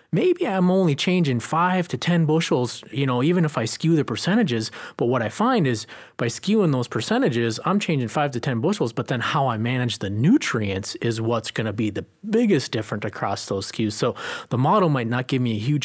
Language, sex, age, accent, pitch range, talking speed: English, male, 30-49, American, 110-145 Hz, 220 wpm